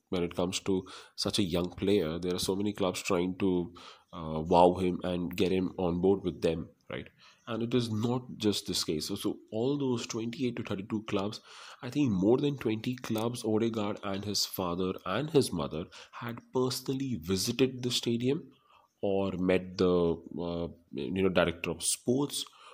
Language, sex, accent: English, male, Indian